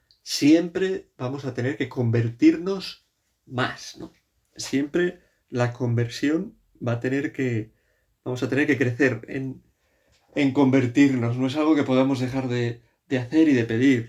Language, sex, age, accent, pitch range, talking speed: Spanish, male, 30-49, Spanish, 120-140 Hz, 150 wpm